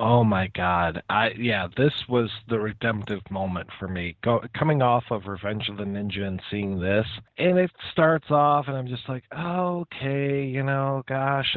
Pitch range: 100-130 Hz